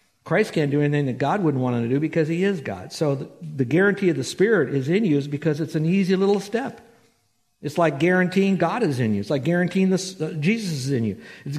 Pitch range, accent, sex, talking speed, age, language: 140-185 Hz, American, male, 250 wpm, 60-79, English